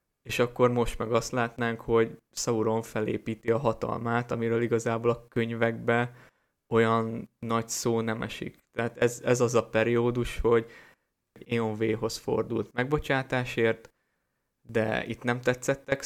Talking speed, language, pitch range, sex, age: 130 wpm, Hungarian, 115-120 Hz, male, 20-39